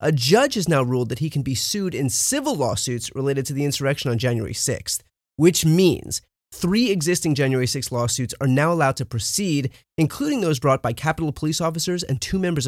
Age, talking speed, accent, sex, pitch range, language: 30-49, 200 wpm, American, male, 120-160 Hz, English